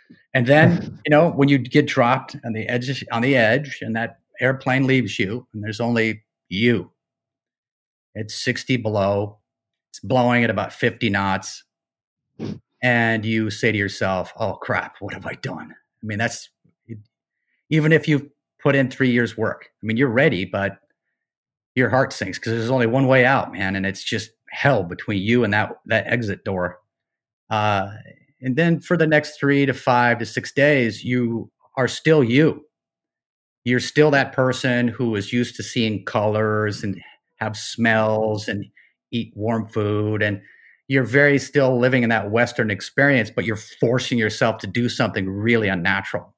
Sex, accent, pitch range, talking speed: male, American, 105-130 Hz, 170 wpm